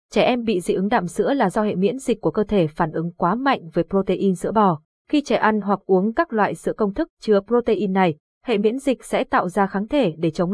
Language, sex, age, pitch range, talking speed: Vietnamese, female, 20-39, 190-235 Hz, 260 wpm